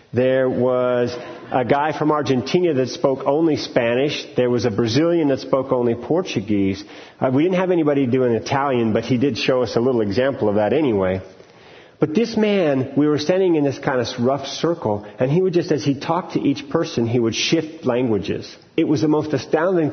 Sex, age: male, 40-59